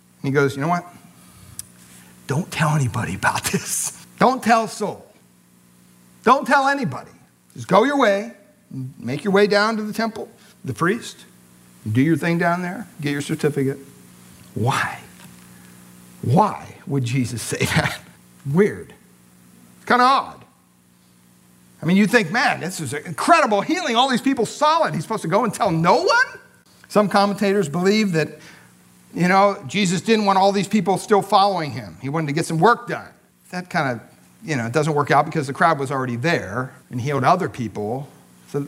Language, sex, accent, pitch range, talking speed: English, male, American, 120-185 Hz, 180 wpm